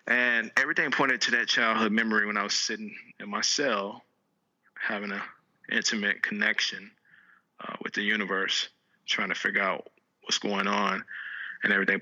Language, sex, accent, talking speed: English, male, American, 155 wpm